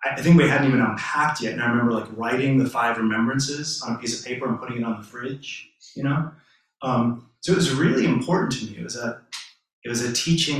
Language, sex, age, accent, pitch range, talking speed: English, male, 30-49, American, 115-145 Hz, 245 wpm